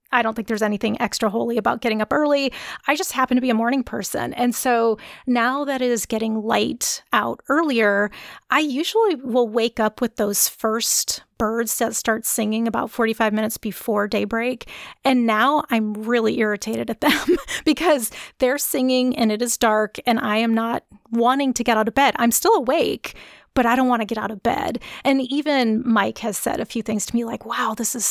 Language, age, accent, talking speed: English, 30-49, American, 205 wpm